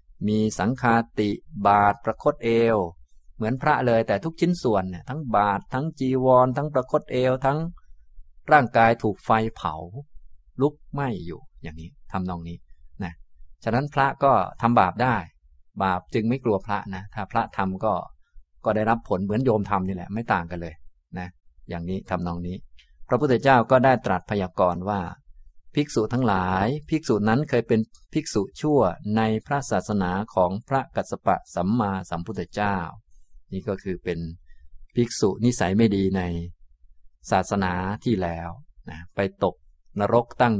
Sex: male